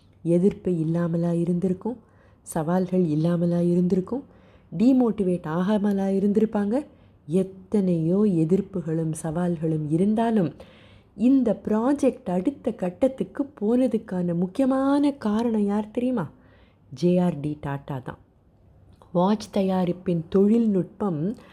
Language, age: Tamil, 20-39